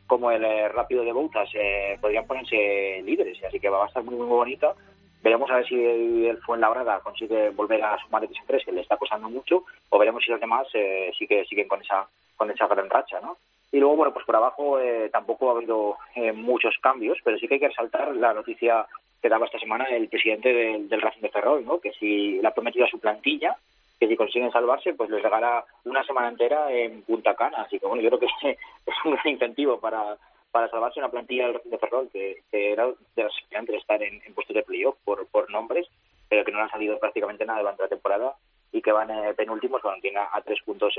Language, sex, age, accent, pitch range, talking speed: Spanish, male, 30-49, Spanish, 110-160 Hz, 240 wpm